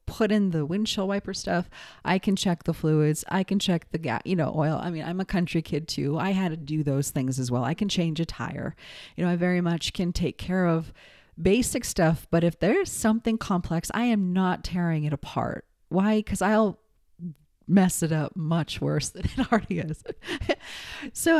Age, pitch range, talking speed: 30-49, 155-200 Hz, 210 wpm